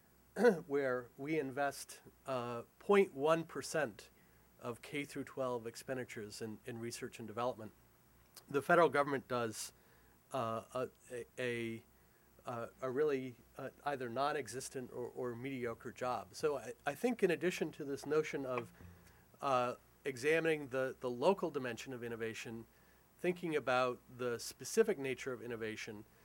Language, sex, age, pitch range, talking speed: English, male, 40-59, 115-145 Hz, 125 wpm